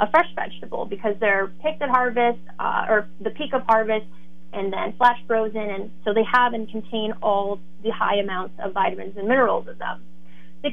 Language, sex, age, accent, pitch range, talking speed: English, female, 20-39, American, 195-250 Hz, 195 wpm